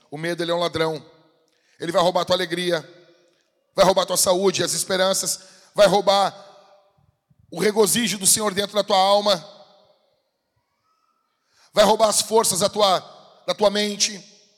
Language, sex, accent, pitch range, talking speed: Portuguese, male, Brazilian, 195-295 Hz, 155 wpm